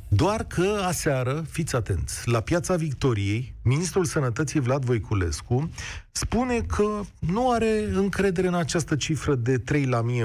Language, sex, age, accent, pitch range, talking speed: Romanian, male, 40-59, native, 110-155 Hz, 140 wpm